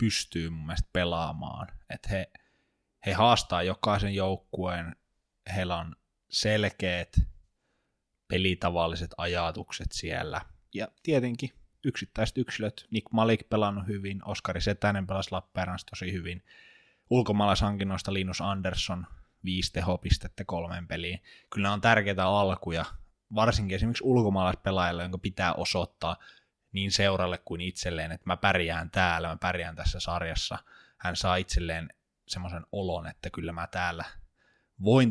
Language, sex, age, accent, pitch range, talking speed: Finnish, male, 20-39, native, 85-100 Hz, 115 wpm